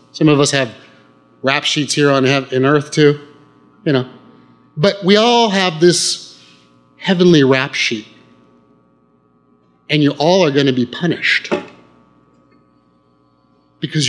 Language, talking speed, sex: English, 130 wpm, male